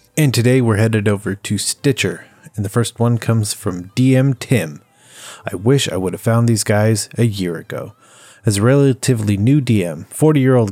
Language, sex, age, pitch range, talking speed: English, male, 30-49, 105-130 Hz, 180 wpm